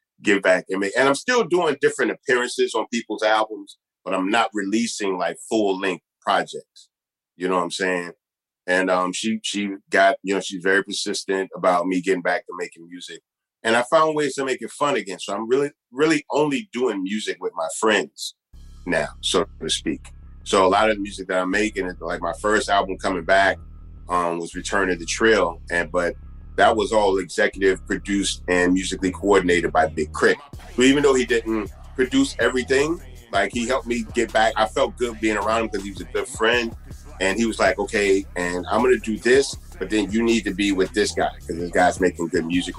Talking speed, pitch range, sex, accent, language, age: 210 wpm, 90-115 Hz, male, American, English, 30-49